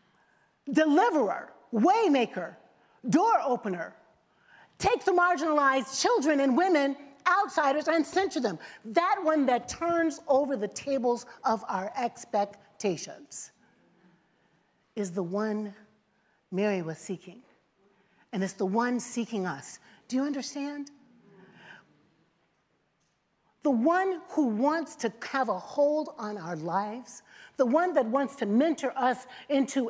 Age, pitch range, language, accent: 40-59, 230-330 Hz, English, American